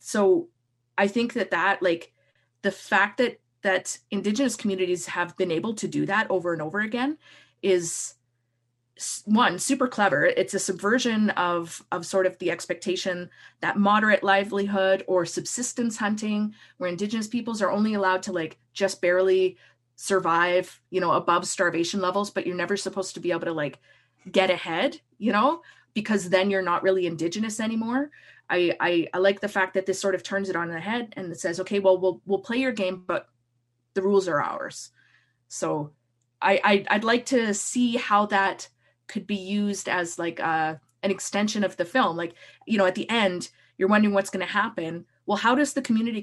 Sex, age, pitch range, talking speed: female, 30-49, 175-215 Hz, 185 wpm